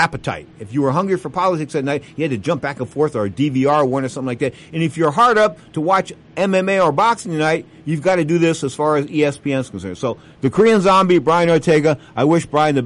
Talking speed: 255 wpm